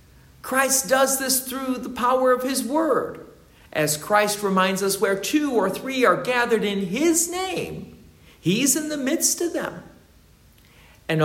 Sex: male